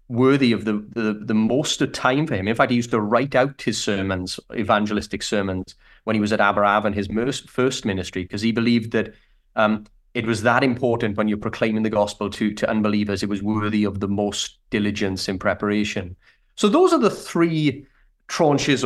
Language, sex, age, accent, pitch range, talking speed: English, male, 30-49, British, 105-125 Hz, 200 wpm